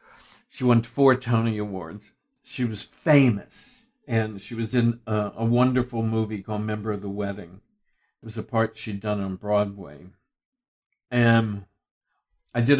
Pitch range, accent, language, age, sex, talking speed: 110-145 Hz, American, English, 50-69, male, 150 wpm